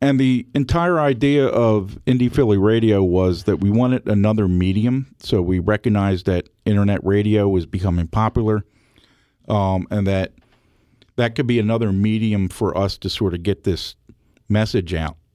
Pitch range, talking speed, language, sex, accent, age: 95-120 Hz, 155 wpm, English, male, American, 50-69